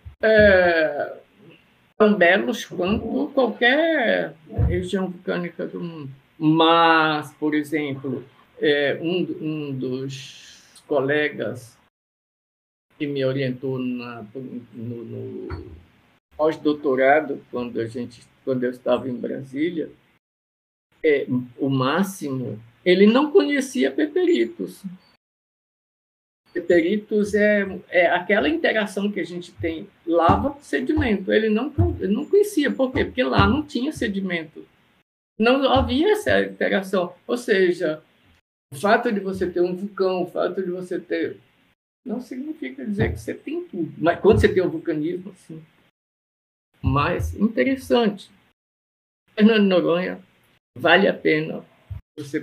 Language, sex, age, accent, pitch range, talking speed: Portuguese, male, 50-69, Brazilian, 135-215 Hz, 120 wpm